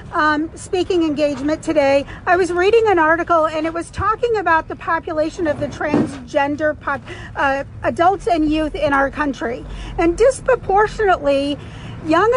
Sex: female